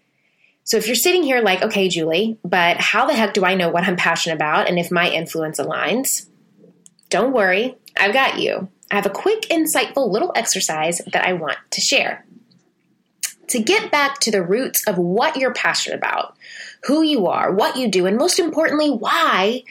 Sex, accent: female, American